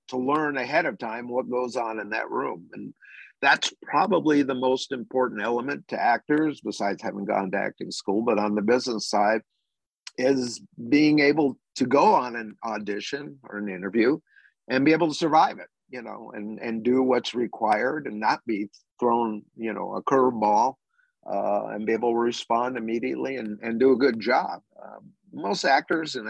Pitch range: 110-140 Hz